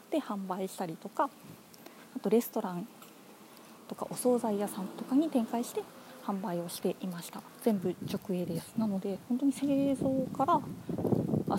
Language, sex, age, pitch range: Japanese, female, 20-39, 185-240 Hz